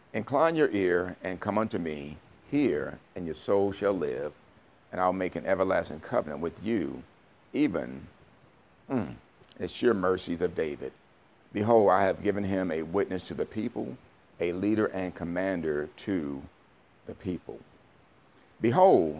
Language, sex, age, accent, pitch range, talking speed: English, male, 50-69, American, 80-100 Hz, 145 wpm